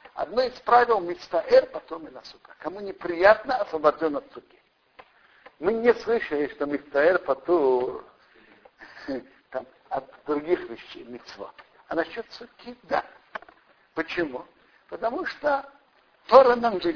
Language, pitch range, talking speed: Russian, 160-235 Hz, 125 wpm